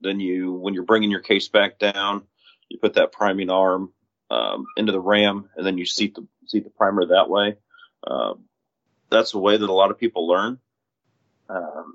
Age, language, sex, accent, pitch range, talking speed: 30-49, English, male, American, 100-110 Hz, 195 wpm